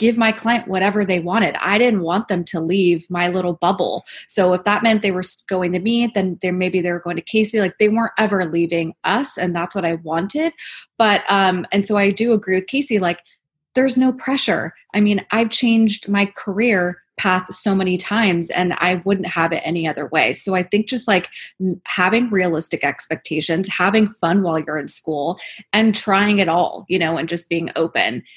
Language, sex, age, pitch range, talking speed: English, female, 20-39, 170-205 Hz, 205 wpm